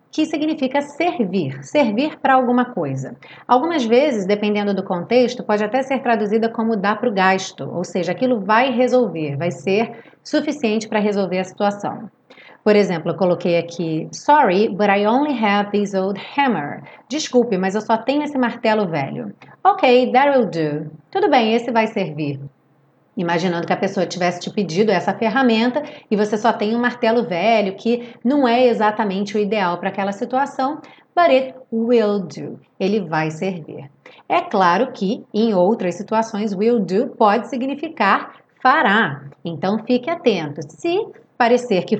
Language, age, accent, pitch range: Portuguese, 30-49, Brazilian, 190-255 Hz